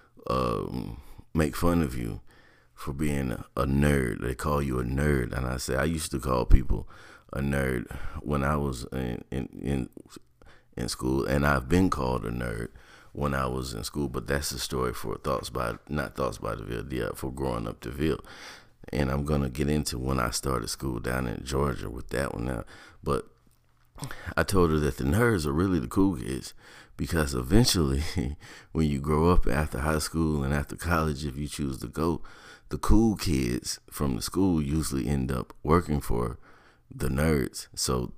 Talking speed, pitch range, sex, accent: 185 wpm, 65-80 Hz, male, American